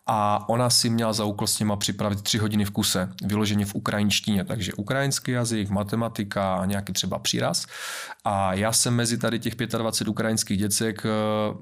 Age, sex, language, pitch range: 30-49, male, Czech, 100-115 Hz